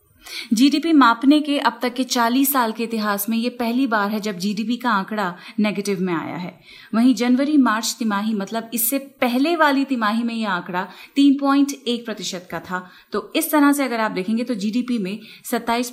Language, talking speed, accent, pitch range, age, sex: Hindi, 190 wpm, native, 210-265 Hz, 30-49, female